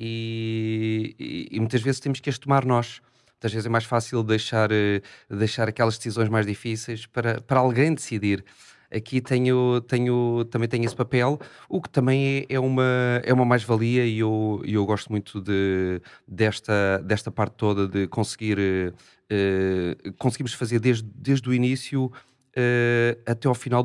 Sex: male